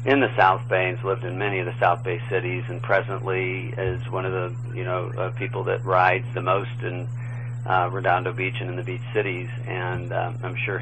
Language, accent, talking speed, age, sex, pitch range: English, American, 215 wpm, 40-59, male, 115-120 Hz